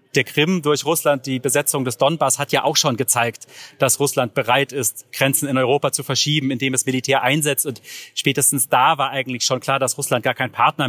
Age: 30-49